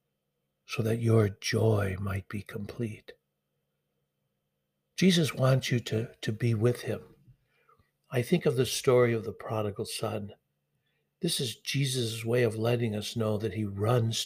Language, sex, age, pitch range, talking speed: English, male, 60-79, 110-130 Hz, 145 wpm